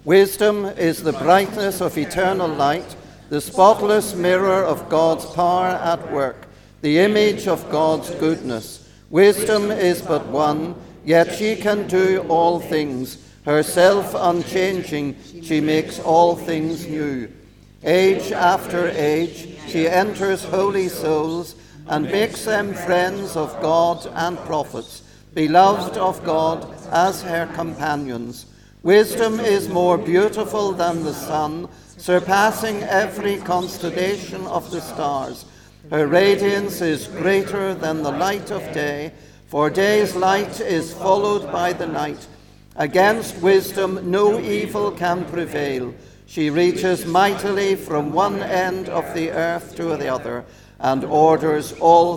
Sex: male